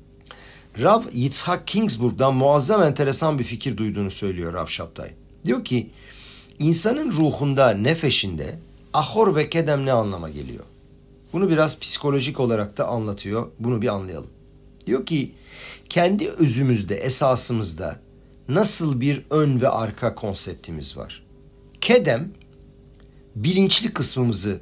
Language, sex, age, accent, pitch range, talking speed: Turkish, male, 50-69, native, 110-160 Hz, 110 wpm